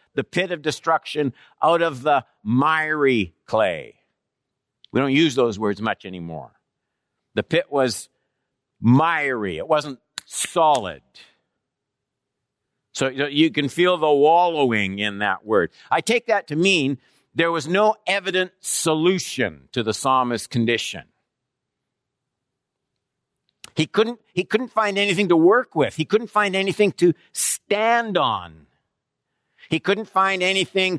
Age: 50-69